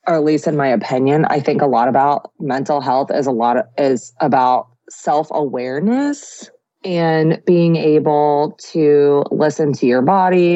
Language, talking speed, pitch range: English, 160 wpm, 135-160 Hz